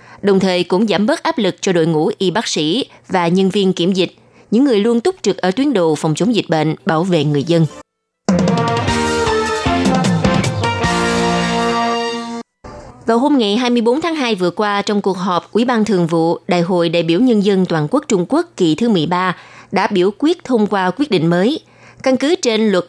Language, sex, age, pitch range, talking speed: Vietnamese, female, 20-39, 170-225 Hz, 195 wpm